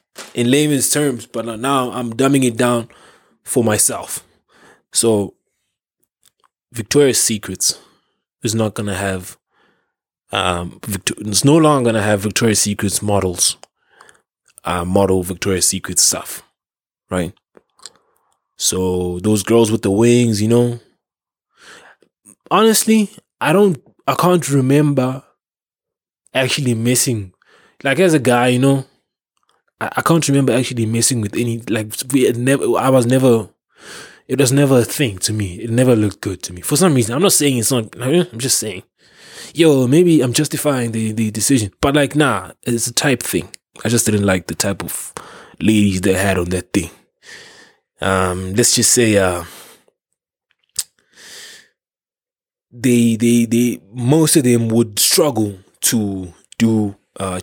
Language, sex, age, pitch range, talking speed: English, male, 20-39, 100-135 Hz, 145 wpm